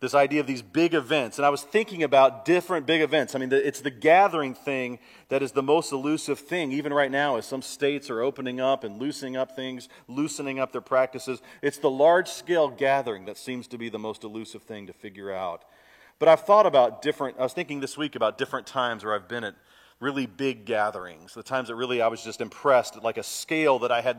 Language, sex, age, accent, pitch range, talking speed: English, male, 40-59, American, 120-150 Hz, 230 wpm